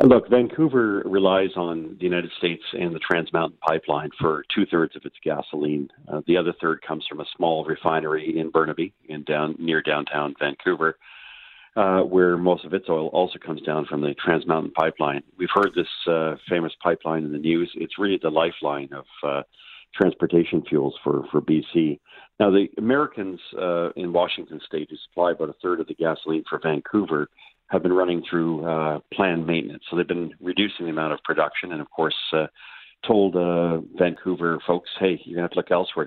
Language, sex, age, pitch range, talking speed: English, male, 50-69, 80-90 Hz, 190 wpm